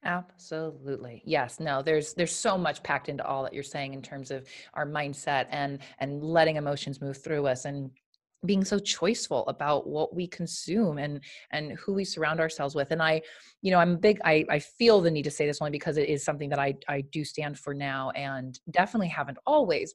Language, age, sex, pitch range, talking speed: English, 30-49, female, 145-190 Hz, 210 wpm